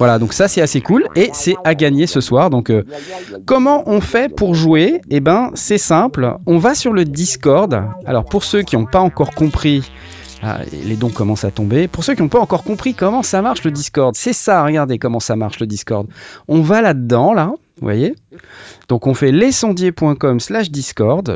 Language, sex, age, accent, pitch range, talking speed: French, male, 30-49, French, 115-180 Hz, 210 wpm